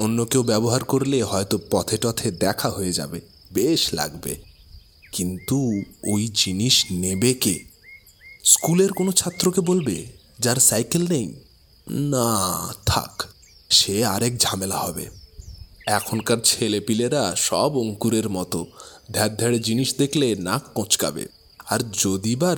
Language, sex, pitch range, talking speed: Bengali, male, 100-150 Hz, 100 wpm